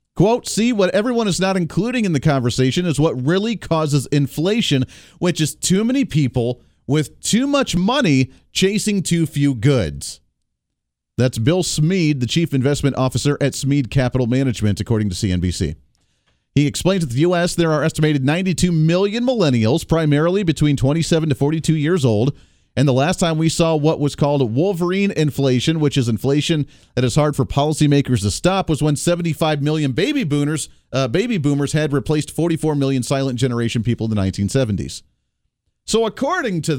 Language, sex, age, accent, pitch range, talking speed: English, male, 40-59, American, 130-180 Hz, 165 wpm